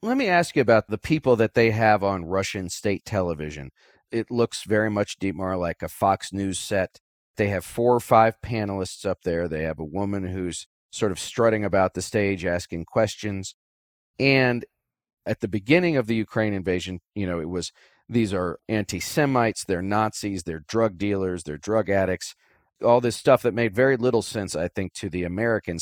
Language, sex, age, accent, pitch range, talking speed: English, male, 40-59, American, 95-120 Hz, 190 wpm